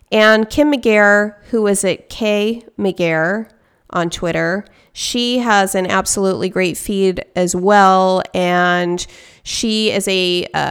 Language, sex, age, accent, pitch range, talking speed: English, female, 30-49, American, 175-205 Hz, 130 wpm